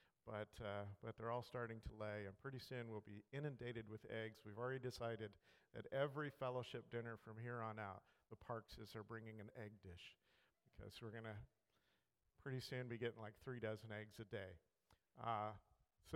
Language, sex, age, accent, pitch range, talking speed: English, male, 50-69, American, 110-135 Hz, 185 wpm